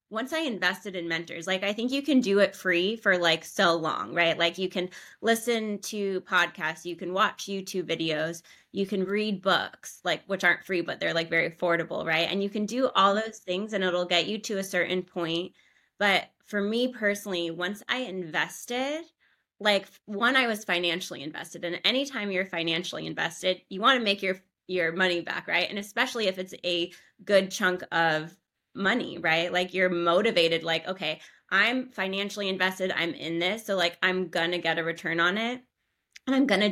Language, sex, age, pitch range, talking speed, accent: English, female, 20-39, 175-205 Hz, 190 wpm, American